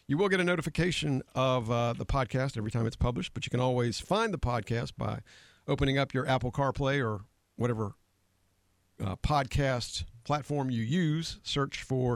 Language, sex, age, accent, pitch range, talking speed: English, male, 50-69, American, 115-145 Hz, 175 wpm